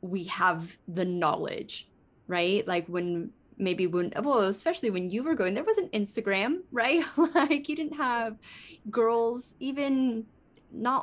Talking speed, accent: 145 wpm, American